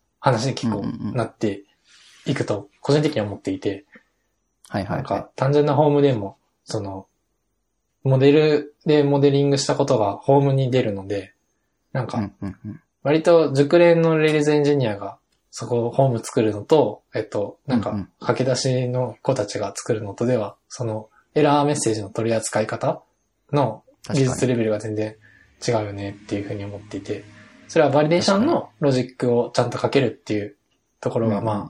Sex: male